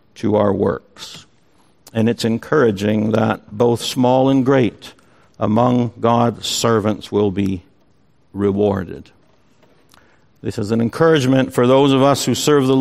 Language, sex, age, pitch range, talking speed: English, male, 60-79, 115-145 Hz, 130 wpm